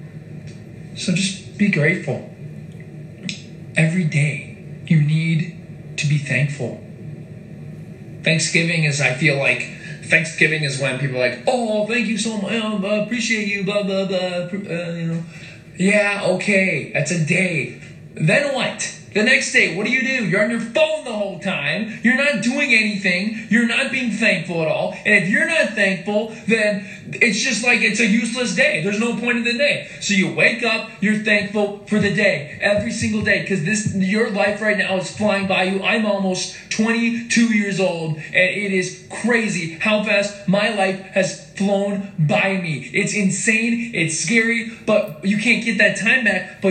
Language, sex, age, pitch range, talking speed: English, male, 20-39, 170-220 Hz, 175 wpm